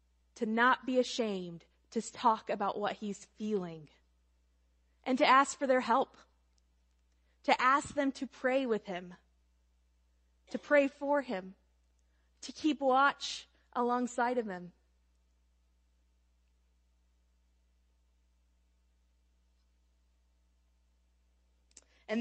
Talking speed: 90 wpm